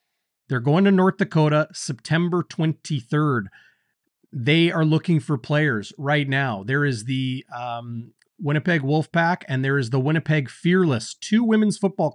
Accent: American